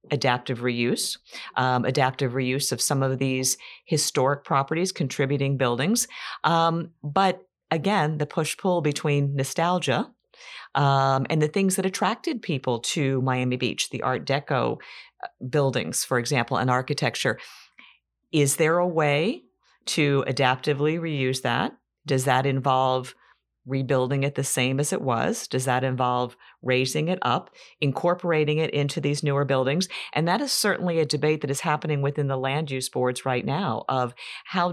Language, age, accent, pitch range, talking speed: English, 50-69, American, 130-155 Hz, 150 wpm